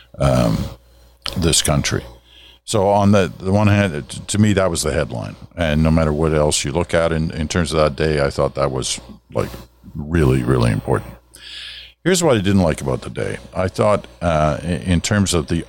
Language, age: English, 50-69